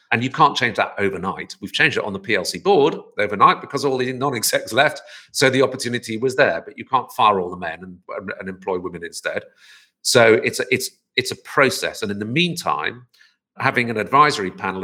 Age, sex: 50-69, male